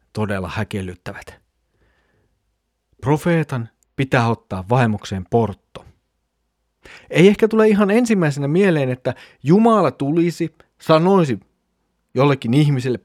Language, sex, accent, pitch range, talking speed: Finnish, male, native, 110-155 Hz, 85 wpm